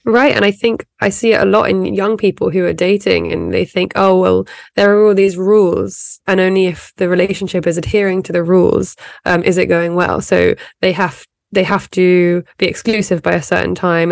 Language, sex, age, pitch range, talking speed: English, female, 20-39, 170-200 Hz, 220 wpm